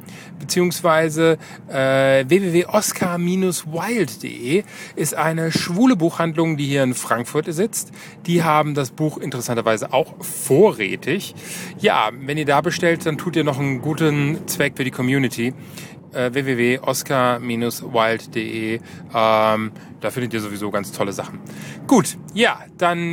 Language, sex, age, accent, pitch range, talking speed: German, male, 30-49, German, 130-175 Hz, 120 wpm